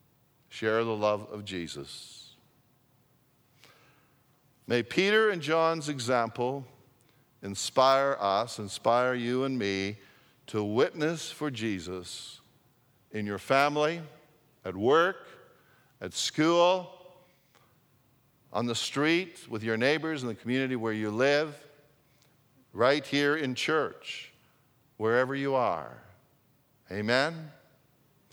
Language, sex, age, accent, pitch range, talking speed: English, male, 50-69, American, 120-155 Hz, 100 wpm